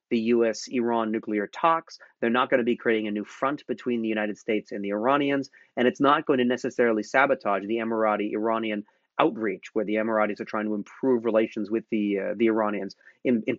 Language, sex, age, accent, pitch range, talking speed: English, male, 30-49, American, 105-125 Hz, 200 wpm